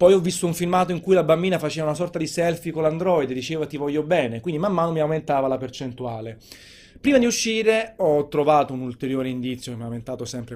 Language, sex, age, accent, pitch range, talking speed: Italian, male, 30-49, native, 125-155 Hz, 235 wpm